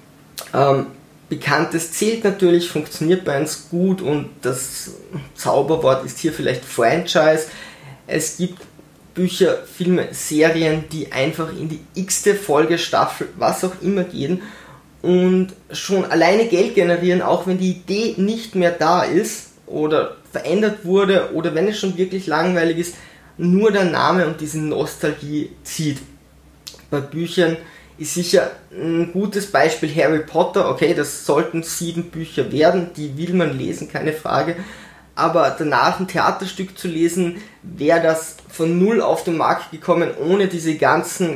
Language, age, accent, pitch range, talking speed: German, 20-39, German, 155-180 Hz, 140 wpm